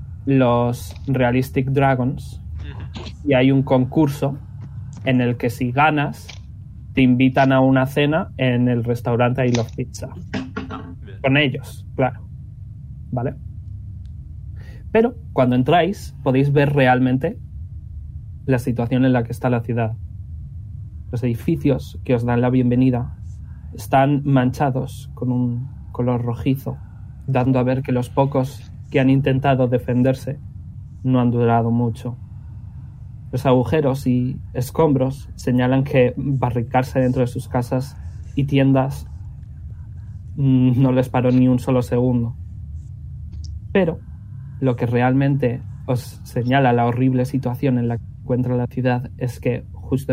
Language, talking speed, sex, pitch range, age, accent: Spanish, 125 wpm, male, 110-130 Hz, 20-39, Spanish